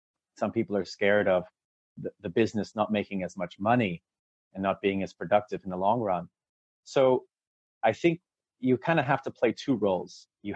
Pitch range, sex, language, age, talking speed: 100-130 Hz, male, English, 30-49, 195 wpm